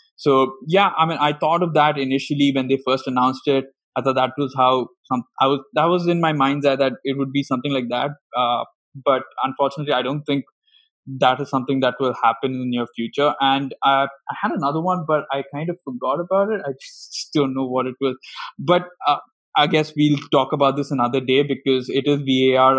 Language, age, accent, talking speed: English, 20-39, Indian, 225 wpm